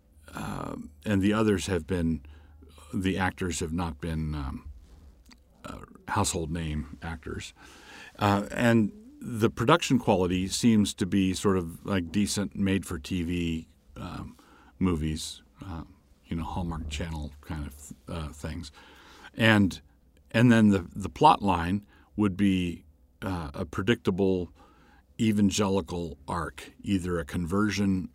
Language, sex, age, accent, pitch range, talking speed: English, male, 50-69, American, 80-100 Hz, 120 wpm